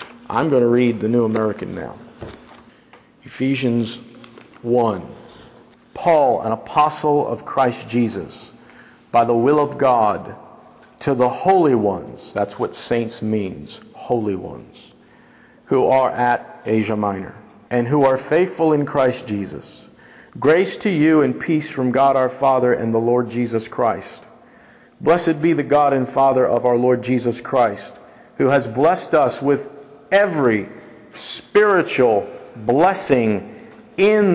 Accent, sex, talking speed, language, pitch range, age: American, male, 135 wpm, English, 120-160 Hz, 50-69